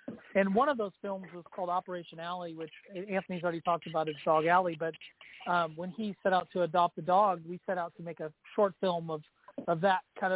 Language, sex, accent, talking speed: English, male, American, 225 wpm